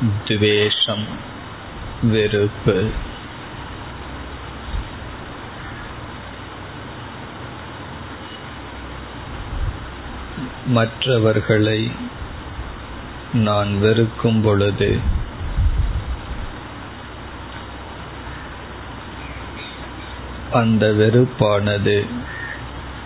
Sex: male